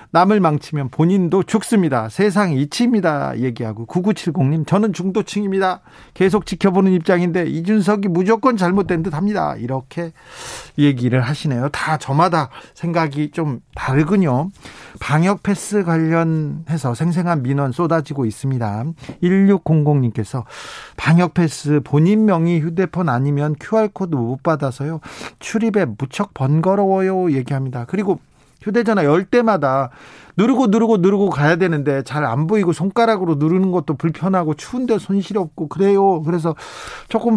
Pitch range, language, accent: 140-190 Hz, Korean, native